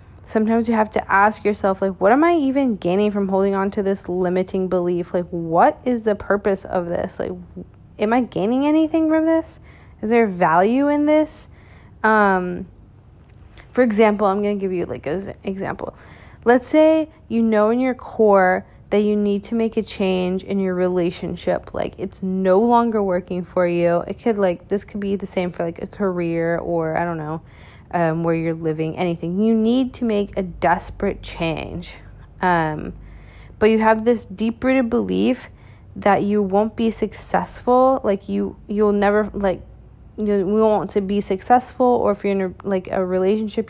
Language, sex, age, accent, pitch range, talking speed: English, female, 20-39, American, 180-225 Hz, 180 wpm